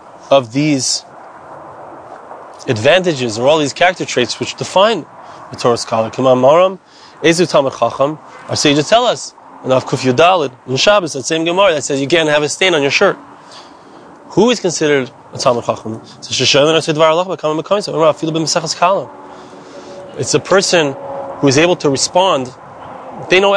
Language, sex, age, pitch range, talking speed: English, male, 30-49, 135-175 Hz, 165 wpm